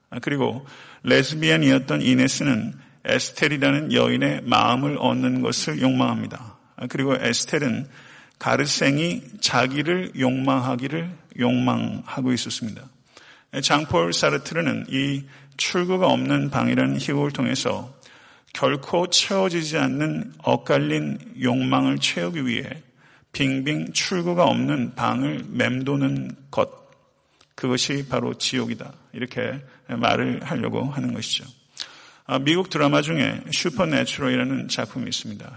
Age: 40-59